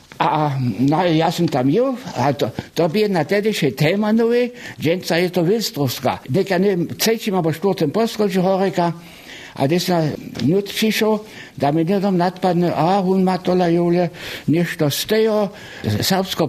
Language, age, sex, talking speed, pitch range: German, 60-79, male, 130 wpm, 145-210 Hz